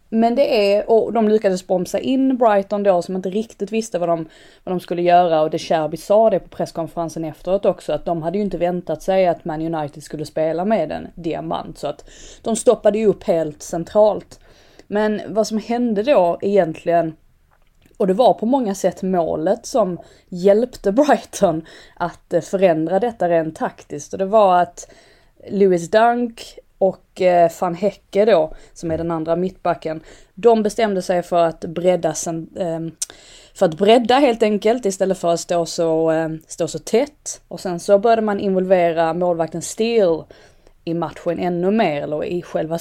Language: English